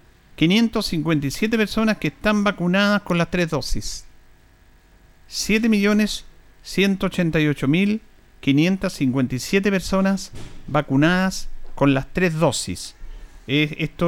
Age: 50-69